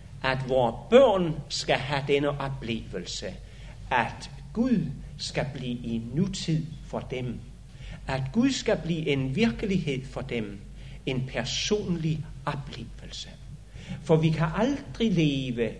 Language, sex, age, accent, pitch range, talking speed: Danish, male, 60-79, native, 130-195 Hz, 120 wpm